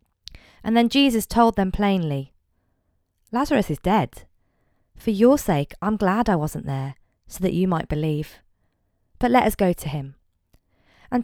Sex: female